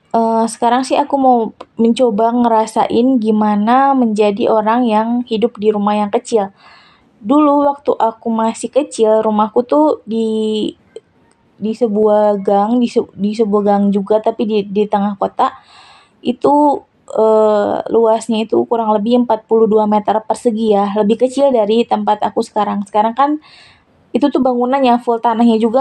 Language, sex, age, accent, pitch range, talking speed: Indonesian, female, 20-39, native, 215-250 Hz, 145 wpm